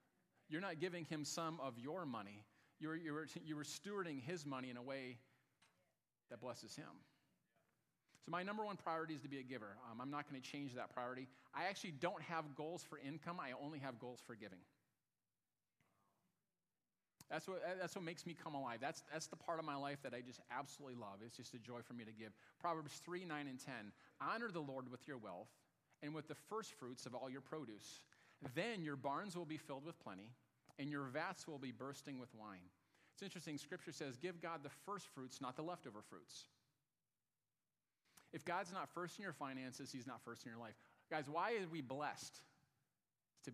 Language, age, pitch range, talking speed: English, 40-59, 125-165 Hz, 205 wpm